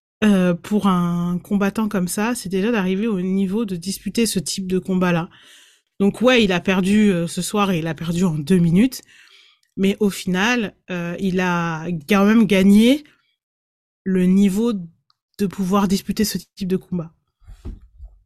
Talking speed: 170 wpm